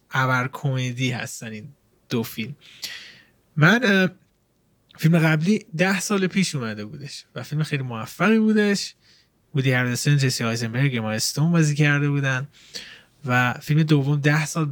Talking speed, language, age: 140 wpm, Persian, 20-39